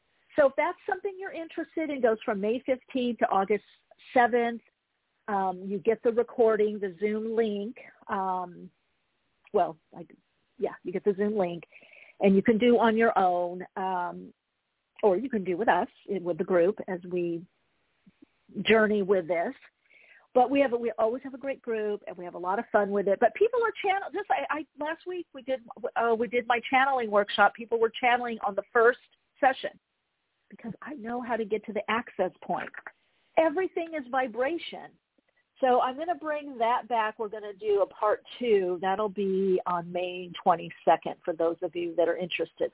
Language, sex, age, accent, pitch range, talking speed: English, female, 50-69, American, 185-250 Hz, 185 wpm